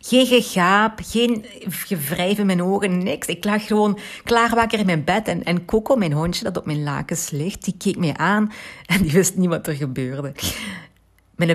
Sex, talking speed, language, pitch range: female, 190 wpm, Dutch, 165-210 Hz